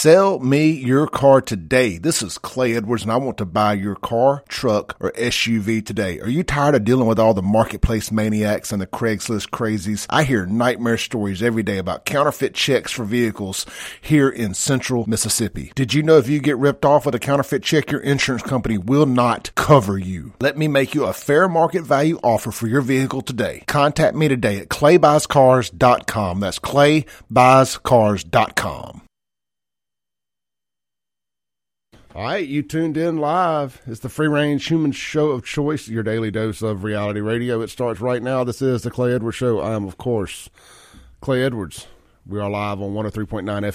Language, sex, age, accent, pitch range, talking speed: English, male, 40-59, American, 105-135 Hz, 175 wpm